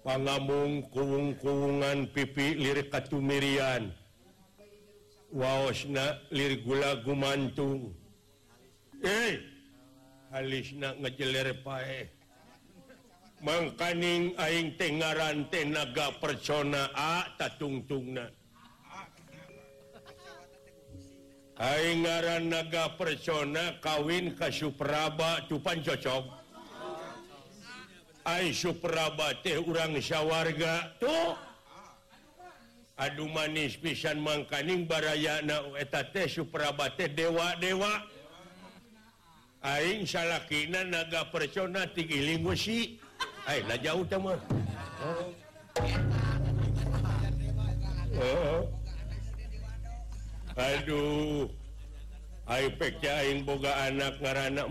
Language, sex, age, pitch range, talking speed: Indonesian, male, 60-79, 130-165 Hz, 70 wpm